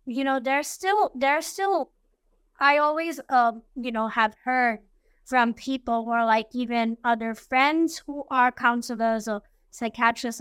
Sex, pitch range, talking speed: female, 220-255 Hz, 155 wpm